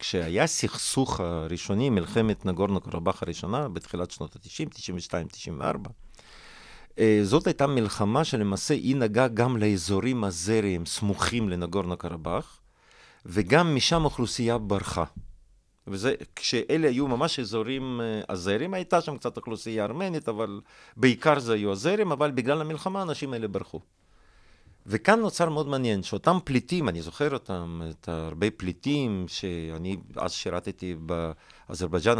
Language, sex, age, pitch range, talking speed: Hebrew, male, 40-59, 95-120 Hz, 115 wpm